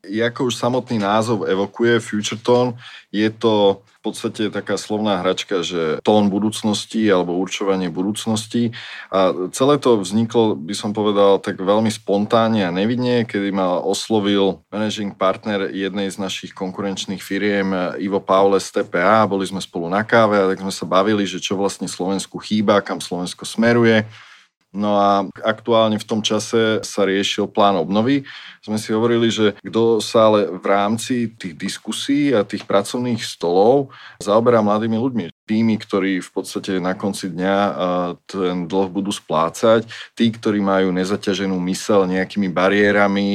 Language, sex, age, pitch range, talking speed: Slovak, male, 20-39, 95-110 Hz, 150 wpm